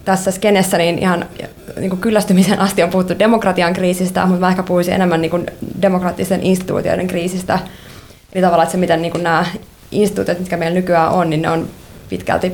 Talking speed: 170 wpm